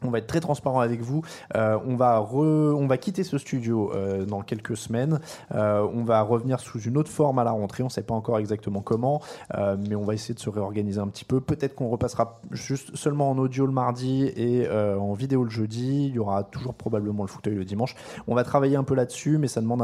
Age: 20-39